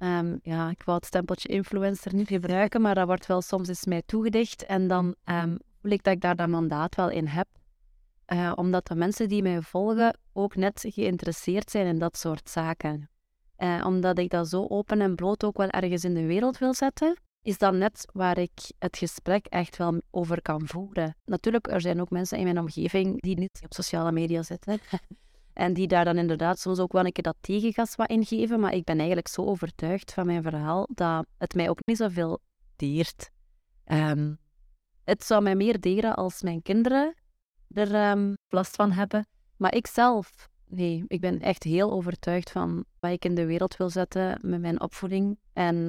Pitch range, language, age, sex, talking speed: 170-200 Hz, Dutch, 30-49, female, 195 wpm